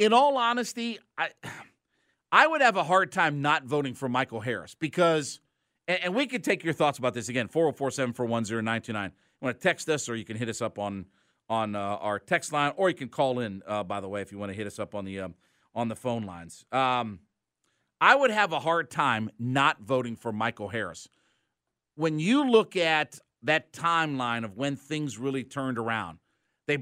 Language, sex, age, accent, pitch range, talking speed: English, male, 50-69, American, 115-165 Hz, 205 wpm